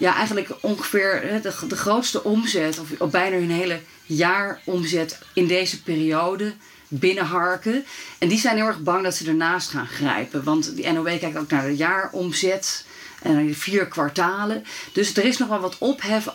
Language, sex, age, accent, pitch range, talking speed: Dutch, female, 40-59, Dutch, 155-200 Hz, 170 wpm